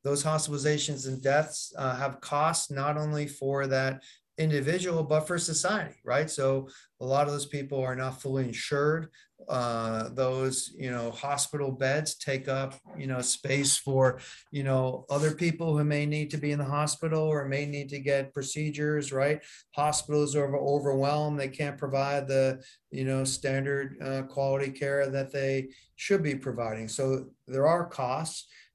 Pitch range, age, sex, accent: 130-145 Hz, 40-59, male, American